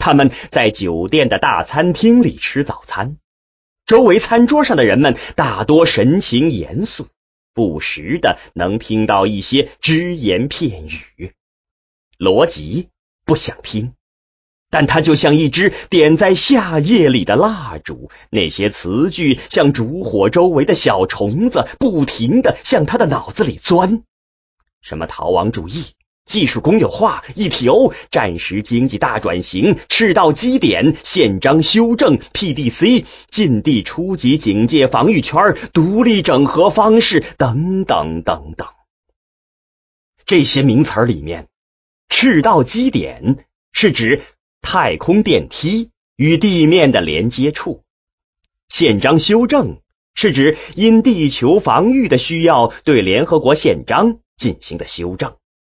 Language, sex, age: English, male, 30-49